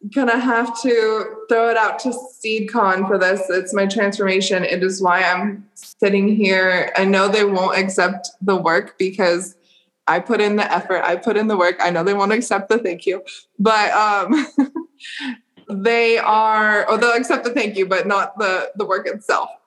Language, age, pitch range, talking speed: English, 20-39, 185-225 Hz, 185 wpm